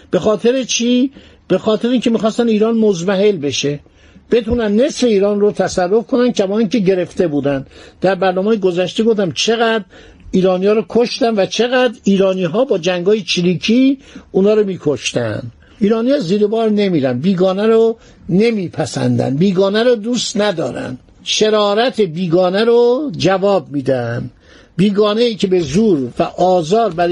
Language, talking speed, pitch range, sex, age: Persian, 145 wpm, 180-230 Hz, male, 60-79